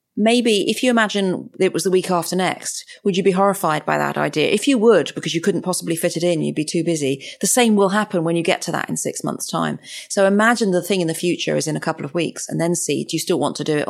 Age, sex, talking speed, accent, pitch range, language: 40-59, female, 290 wpm, British, 160-195 Hz, English